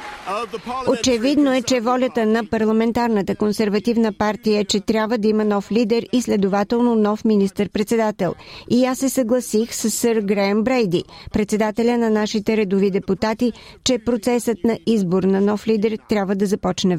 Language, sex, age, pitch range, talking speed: Bulgarian, female, 50-69, 205-235 Hz, 150 wpm